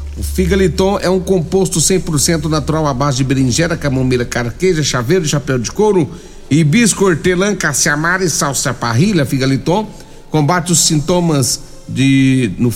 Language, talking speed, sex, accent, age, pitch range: Portuguese, 130 wpm, male, Brazilian, 60-79, 140-190 Hz